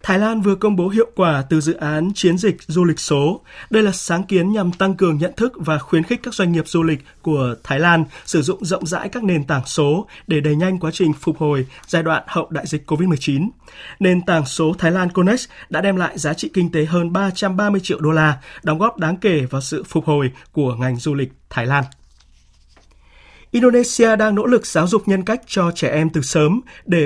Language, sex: Vietnamese, male